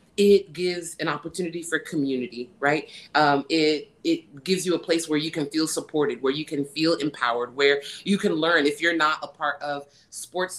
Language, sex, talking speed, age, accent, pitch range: English, female, 200 wpm, 30-49, American, 150-190 Hz